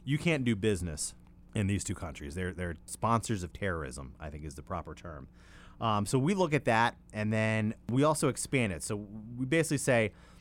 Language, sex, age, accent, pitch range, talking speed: English, male, 30-49, American, 90-120 Hz, 200 wpm